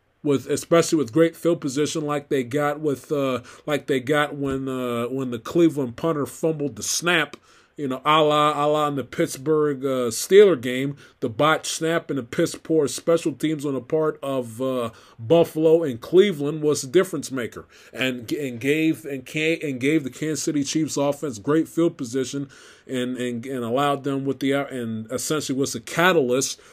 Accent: American